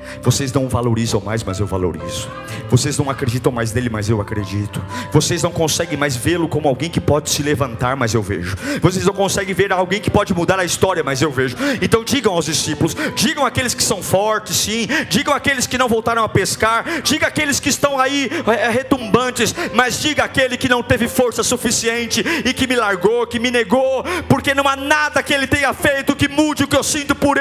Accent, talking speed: Brazilian, 210 wpm